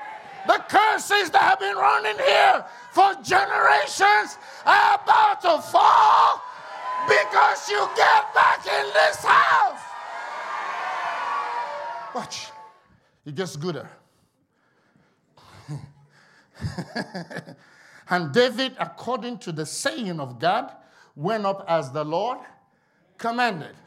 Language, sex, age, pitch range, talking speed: English, male, 50-69, 160-230 Hz, 95 wpm